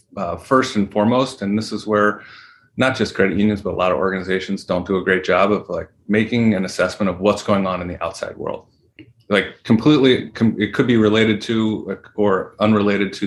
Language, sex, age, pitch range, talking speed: English, male, 30-49, 100-115 Hz, 205 wpm